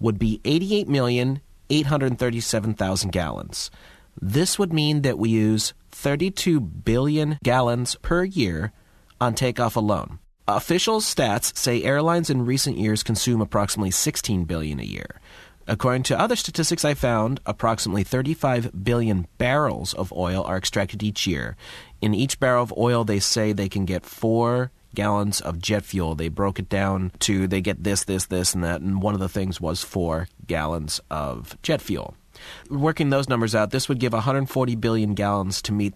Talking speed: 160 wpm